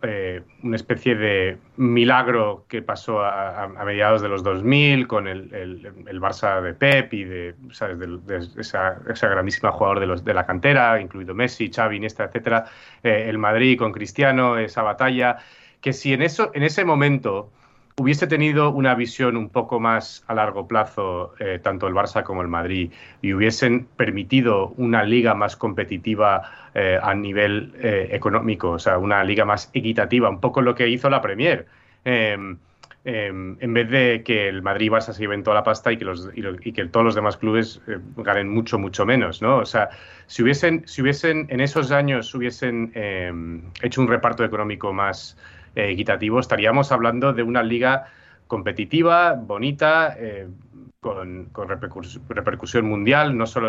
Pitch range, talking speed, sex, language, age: 100-130 Hz, 180 wpm, male, Spanish, 30-49